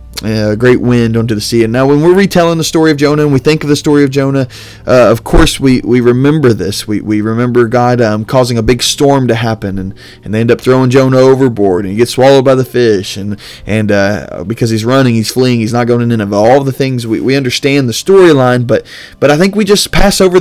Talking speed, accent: 250 wpm, American